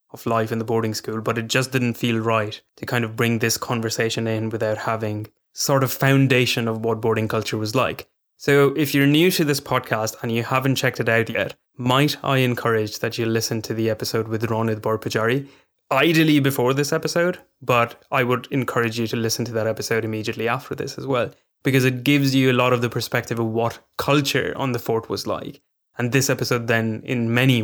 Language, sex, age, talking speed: English, male, 20-39, 215 wpm